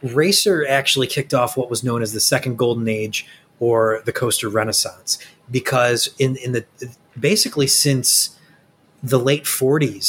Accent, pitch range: American, 110-135 Hz